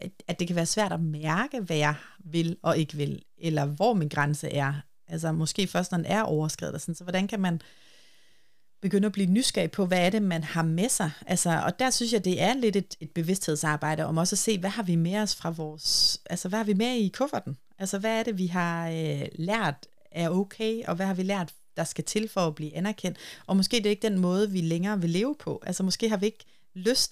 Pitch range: 165-205 Hz